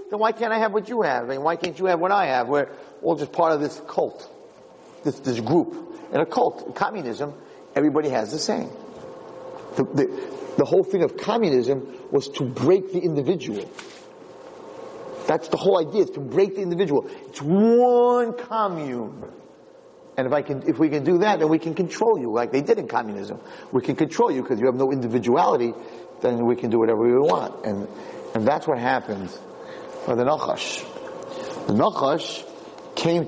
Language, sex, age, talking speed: English, male, 40-59, 190 wpm